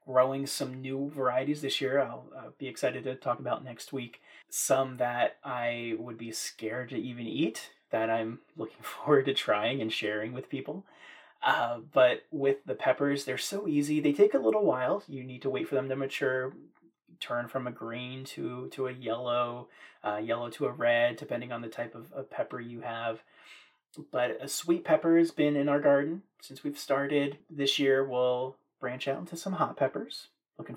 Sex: male